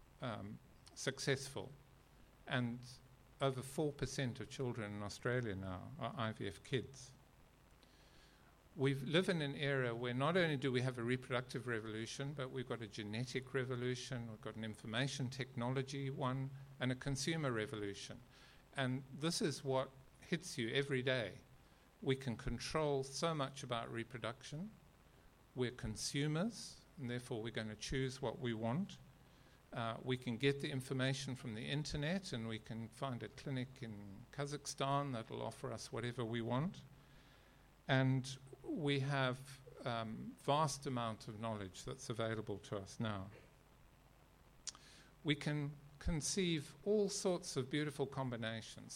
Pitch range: 115-140 Hz